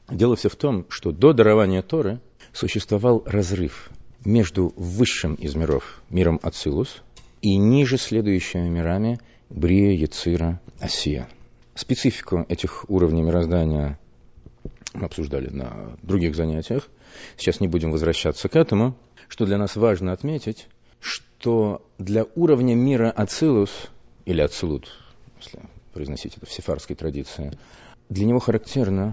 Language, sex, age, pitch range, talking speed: Russian, male, 40-59, 85-115 Hz, 120 wpm